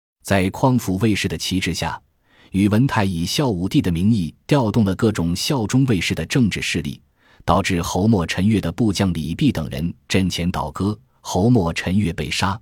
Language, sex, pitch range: Chinese, male, 85-115 Hz